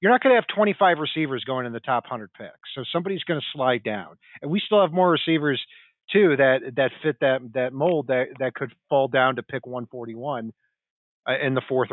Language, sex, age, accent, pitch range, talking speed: English, male, 40-59, American, 125-155 Hz, 220 wpm